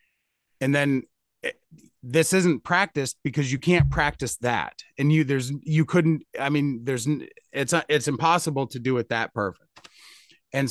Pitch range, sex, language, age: 130-155 Hz, male, English, 30-49